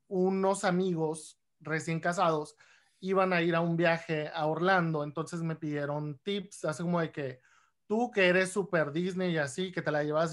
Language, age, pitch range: Spanish, 30-49, 165-195 Hz